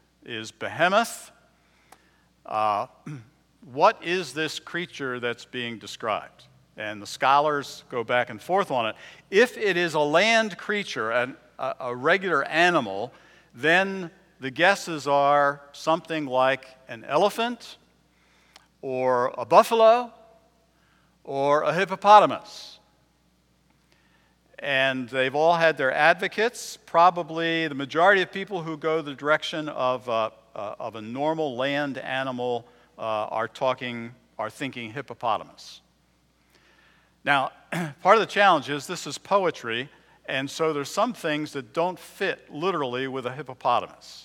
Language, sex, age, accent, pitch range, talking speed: English, male, 60-79, American, 130-180 Hz, 120 wpm